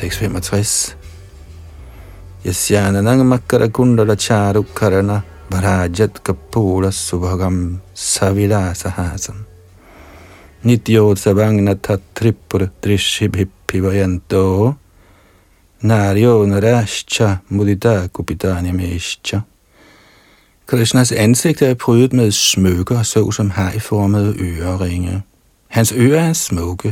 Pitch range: 95-115 Hz